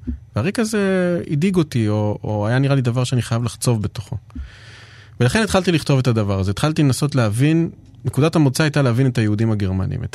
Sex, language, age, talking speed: male, Hebrew, 30-49, 185 wpm